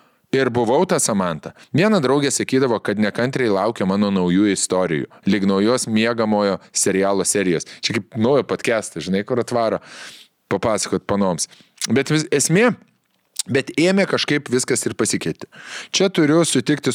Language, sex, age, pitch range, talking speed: English, male, 20-39, 110-155 Hz, 135 wpm